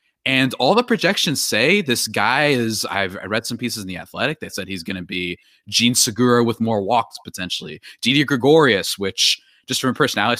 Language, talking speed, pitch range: English, 200 wpm, 100-150 Hz